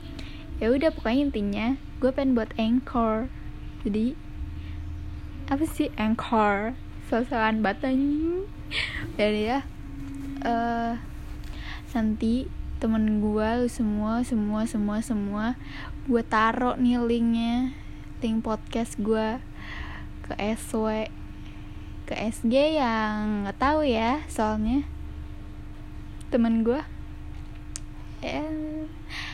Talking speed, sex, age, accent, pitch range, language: 90 wpm, female, 10-29, native, 215-245 Hz, Indonesian